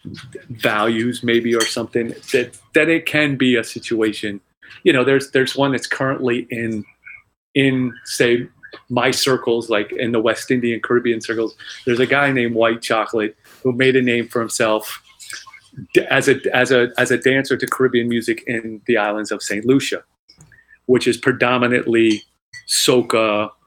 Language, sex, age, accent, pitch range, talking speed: English, male, 30-49, American, 110-135 Hz, 155 wpm